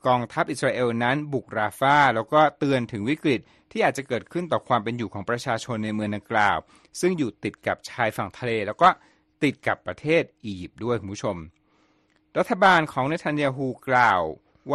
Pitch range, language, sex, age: 115-155 Hz, Thai, male, 60-79